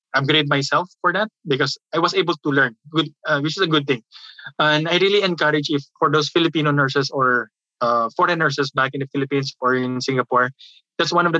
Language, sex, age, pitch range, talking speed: English, male, 20-39, 135-165 Hz, 205 wpm